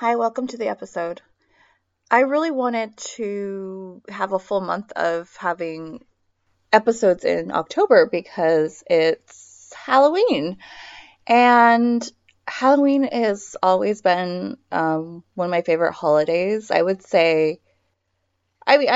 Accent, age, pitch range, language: American, 20-39, 165-235 Hz, English